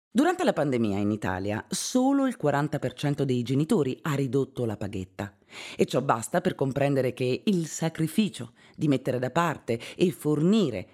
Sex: female